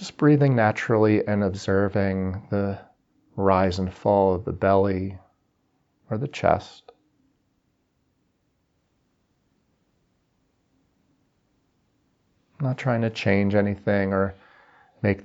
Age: 40-59